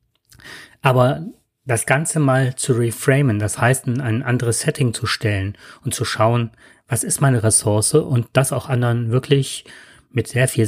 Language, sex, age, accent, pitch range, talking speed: German, male, 30-49, German, 115-130 Hz, 165 wpm